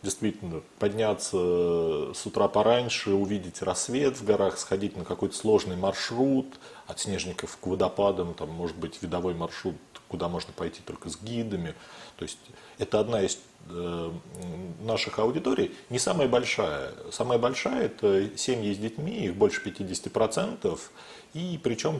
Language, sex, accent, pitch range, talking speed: Russian, male, native, 95-115 Hz, 140 wpm